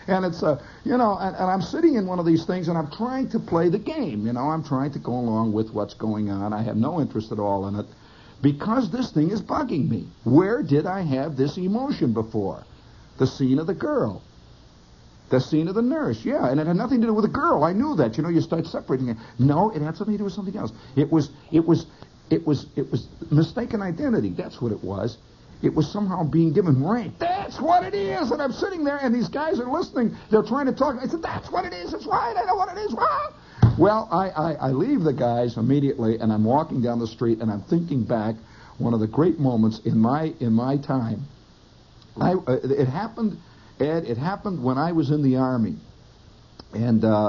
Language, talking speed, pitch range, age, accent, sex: English, 235 wpm, 115-190 Hz, 60-79, American, male